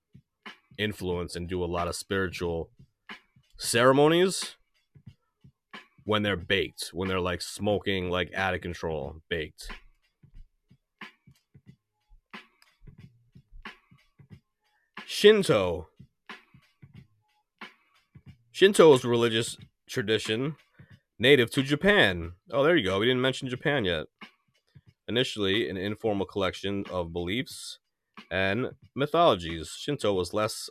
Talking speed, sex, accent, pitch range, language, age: 95 wpm, male, American, 90-120 Hz, English, 30-49